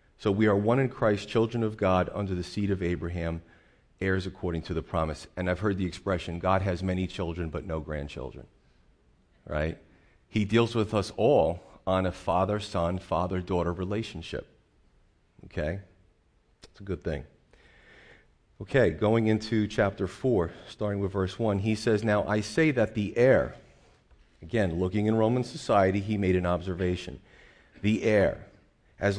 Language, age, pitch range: English, 40-59, 85-105 Hz